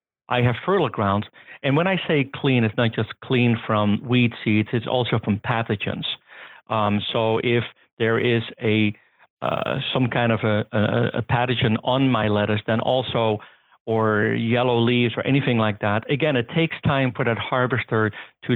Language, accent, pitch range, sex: English, American, 110-125 Hz, male